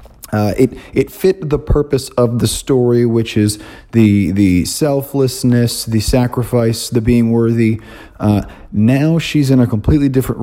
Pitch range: 105-125 Hz